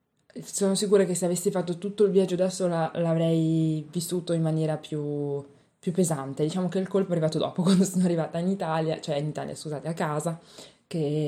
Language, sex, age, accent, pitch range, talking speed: Italian, female, 20-39, native, 150-180 Hz, 195 wpm